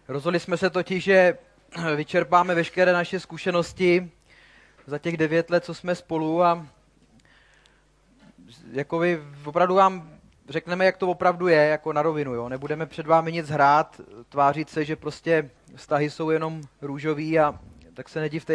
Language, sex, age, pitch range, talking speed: Czech, male, 30-49, 150-180 Hz, 140 wpm